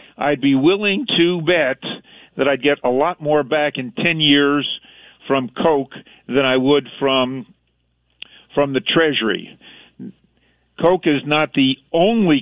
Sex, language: male, English